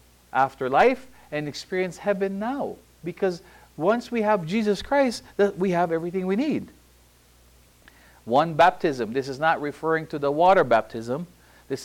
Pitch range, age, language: 110-180 Hz, 50-69, English